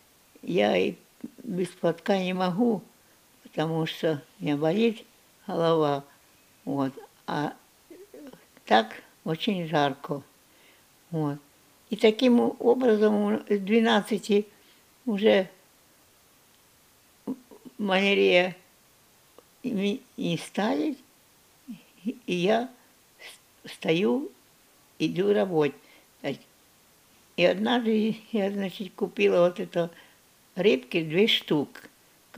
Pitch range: 175-220 Hz